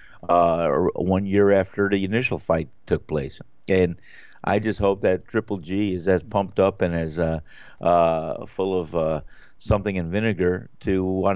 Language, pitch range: English, 90-125 Hz